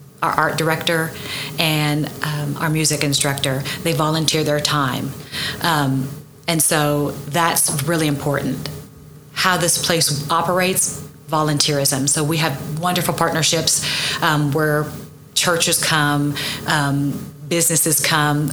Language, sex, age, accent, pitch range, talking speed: English, female, 30-49, American, 145-170 Hz, 110 wpm